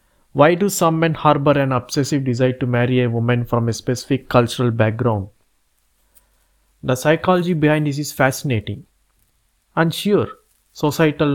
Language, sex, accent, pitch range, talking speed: Telugu, male, native, 120-145 Hz, 135 wpm